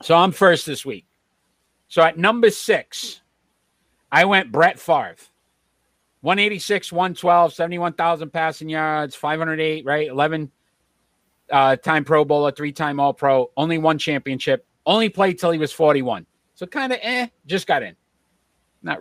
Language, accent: English, American